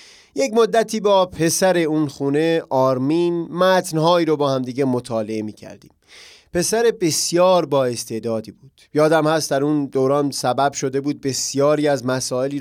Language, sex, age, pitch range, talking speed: Persian, male, 30-49, 135-180 Hz, 140 wpm